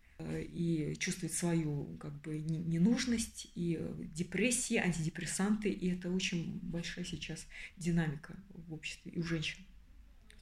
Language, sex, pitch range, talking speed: Russian, female, 160-195 Hz, 110 wpm